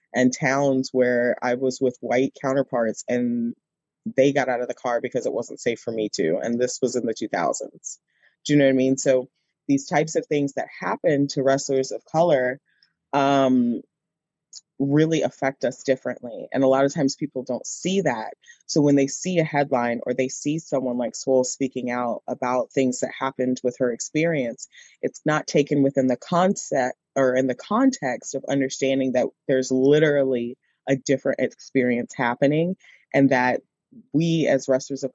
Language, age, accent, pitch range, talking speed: English, 20-39, American, 125-145 Hz, 180 wpm